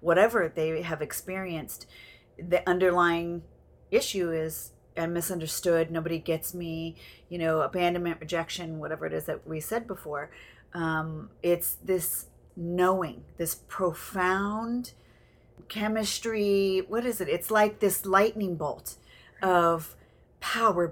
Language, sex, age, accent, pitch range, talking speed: English, female, 40-59, American, 160-185 Hz, 120 wpm